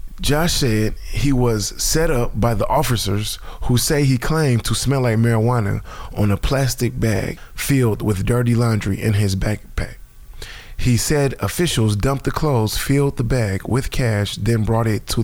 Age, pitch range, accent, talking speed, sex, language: 20-39, 105-135 Hz, American, 170 wpm, male, English